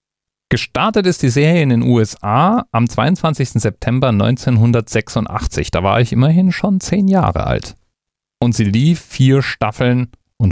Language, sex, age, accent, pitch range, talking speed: German, male, 40-59, German, 90-125 Hz, 145 wpm